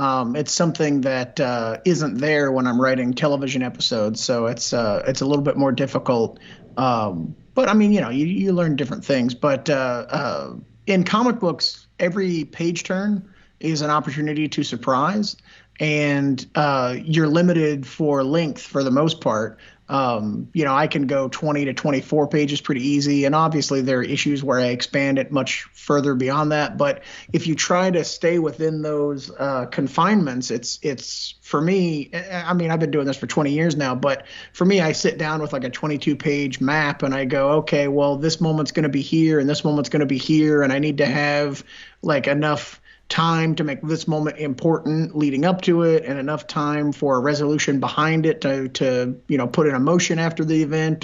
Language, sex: English, male